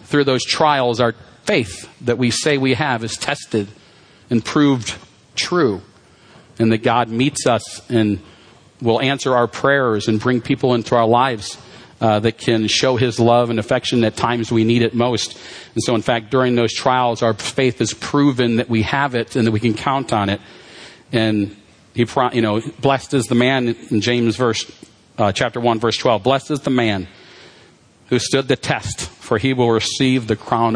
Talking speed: 190 wpm